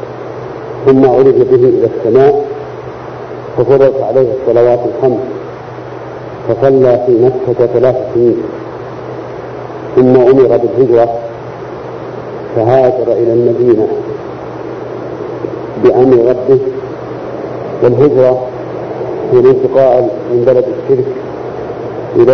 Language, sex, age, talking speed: Arabic, male, 50-69, 80 wpm